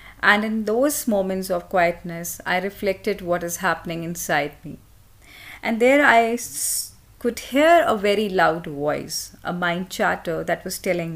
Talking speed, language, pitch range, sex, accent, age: 150 wpm, English, 155-200 Hz, female, Indian, 30-49